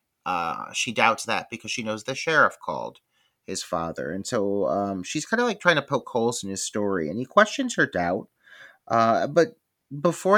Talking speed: 195 wpm